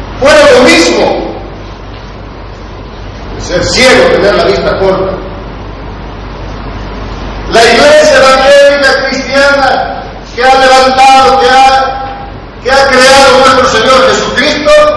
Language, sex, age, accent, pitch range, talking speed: Spanish, male, 40-59, Mexican, 190-270 Hz, 90 wpm